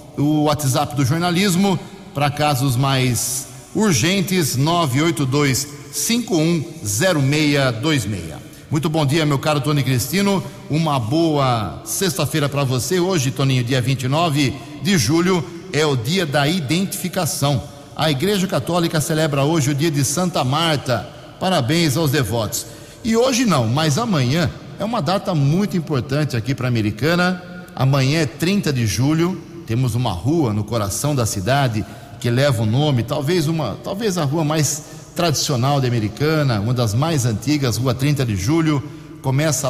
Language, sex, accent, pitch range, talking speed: Portuguese, male, Brazilian, 130-160 Hz, 140 wpm